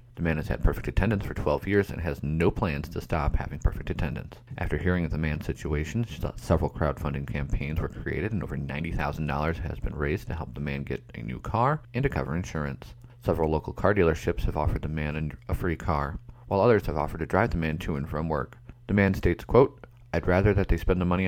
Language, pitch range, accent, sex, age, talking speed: English, 75-100 Hz, American, male, 30-49, 230 wpm